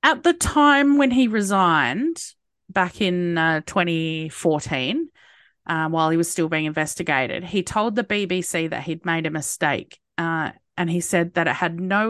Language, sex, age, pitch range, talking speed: English, female, 30-49, 165-205 Hz, 170 wpm